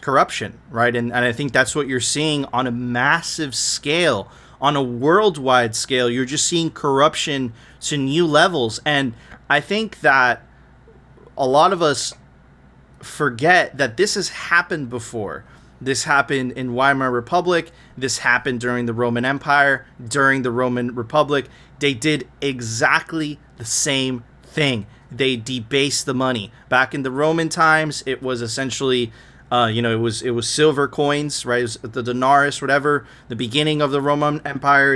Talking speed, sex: 160 wpm, male